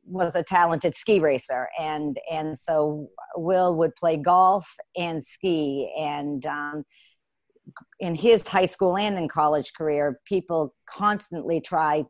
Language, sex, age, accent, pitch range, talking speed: English, female, 50-69, American, 150-185 Hz, 135 wpm